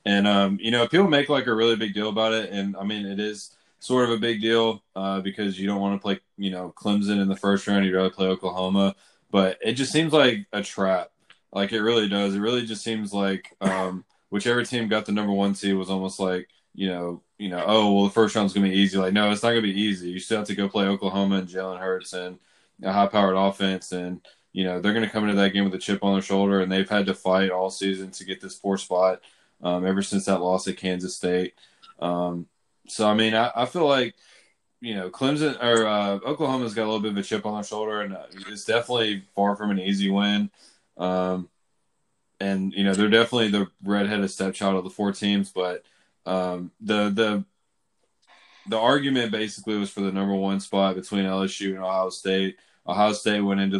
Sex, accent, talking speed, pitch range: male, American, 230 wpm, 95-105 Hz